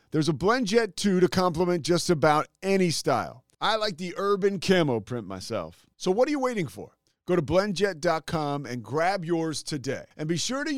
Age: 40-59